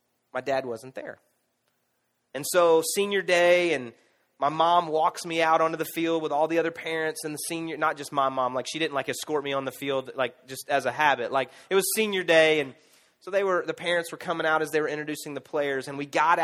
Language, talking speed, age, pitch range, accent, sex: English, 240 wpm, 30-49, 135-170 Hz, American, male